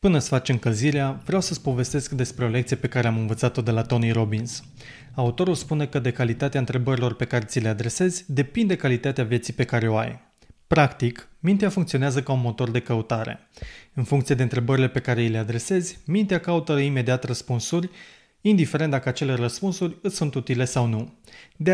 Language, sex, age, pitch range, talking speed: Romanian, male, 20-39, 120-155 Hz, 185 wpm